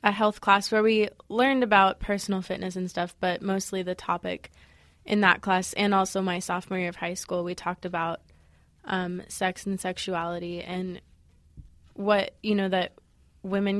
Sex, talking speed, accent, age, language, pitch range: female, 170 wpm, American, 20-39, English, 180-200 Hz